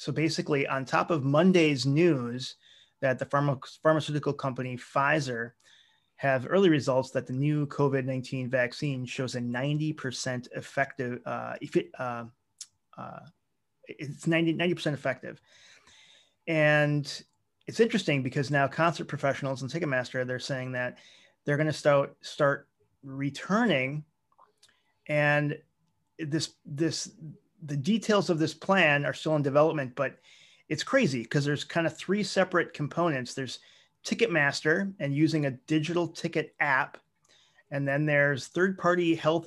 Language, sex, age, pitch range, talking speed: English, male, 30-49, 130-160 Hz, 130 wpm